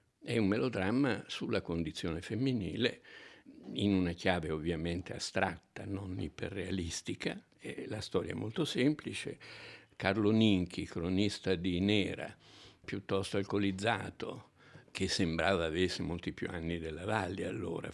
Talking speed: 115 wpm